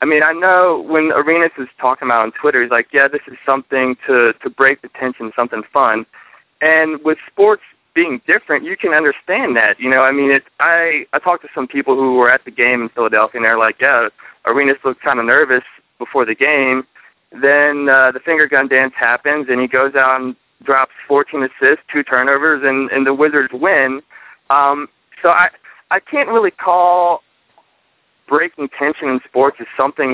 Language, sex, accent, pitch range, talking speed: English, male, American, 125-145 Hz, 195 wpm